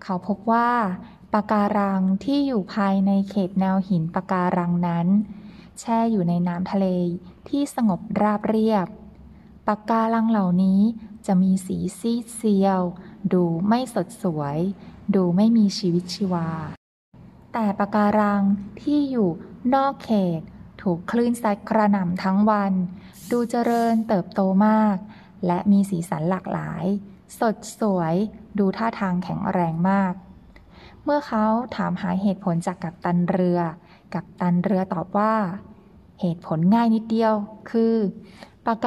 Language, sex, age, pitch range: Thai, female, 20-39, 180-215 Hz